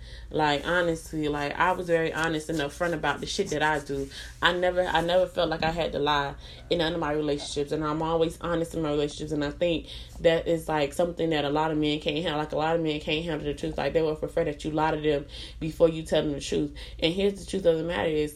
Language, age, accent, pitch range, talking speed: English, 20-39, American, 150-170 Hz, 270 wpm